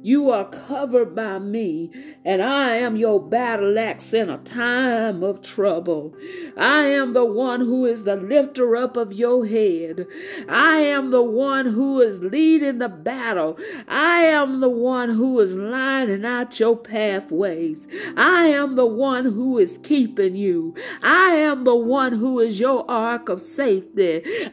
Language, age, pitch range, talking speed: English, 50-69, 220-280 Hz, 160 wpm